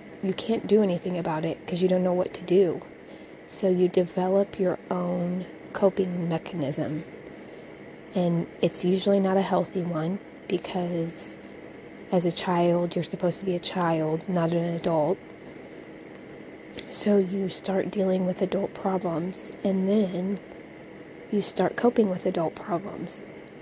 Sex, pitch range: female, 170-190 Hz